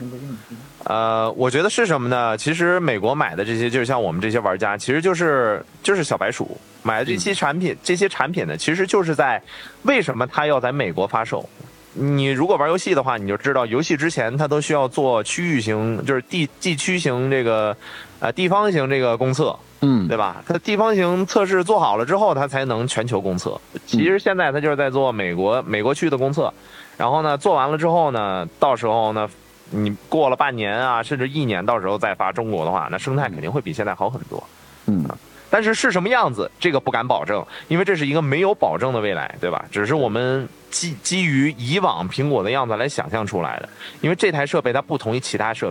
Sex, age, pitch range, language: male, 20-39, 120-175 Hz, Chinese